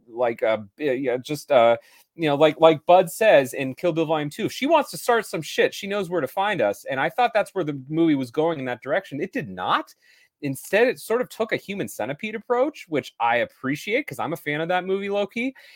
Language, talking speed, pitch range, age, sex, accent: English, 250 wpm, 140-220 Hz, 30-49, male, American